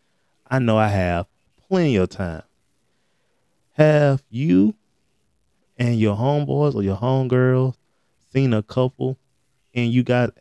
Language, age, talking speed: English, 20-39, 120 wpm